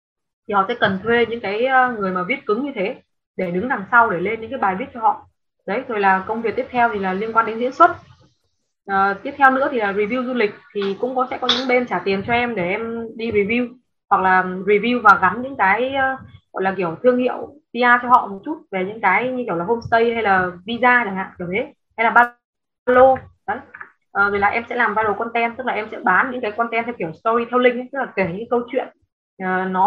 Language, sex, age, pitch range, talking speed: Vietnamese, female, 20-39, 195-250 Hz, 250 wpm